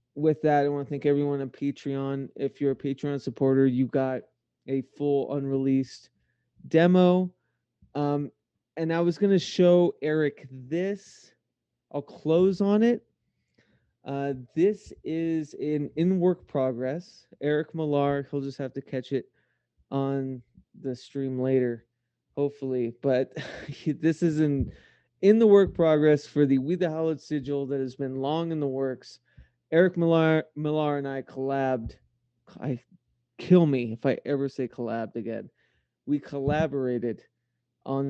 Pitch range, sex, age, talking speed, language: 125-150 Hz, male, 20-39, 145 wpm, English